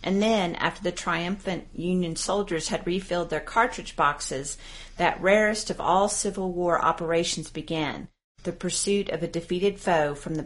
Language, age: English, 40-59